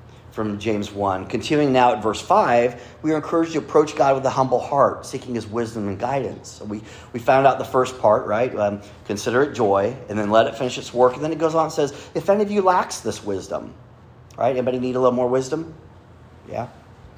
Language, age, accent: English, 40-59, American